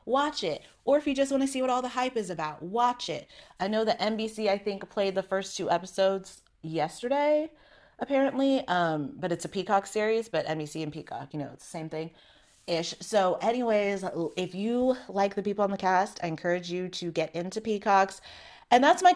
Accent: American